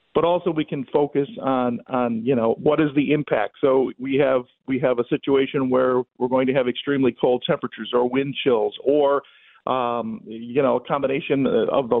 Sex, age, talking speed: male, 50-69, 195 wpm